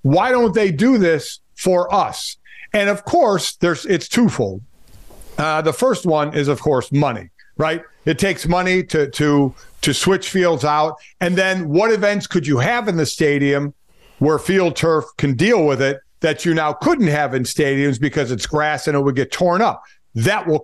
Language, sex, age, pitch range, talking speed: English, male, 50-69, 145-195 Hz, 190 wpm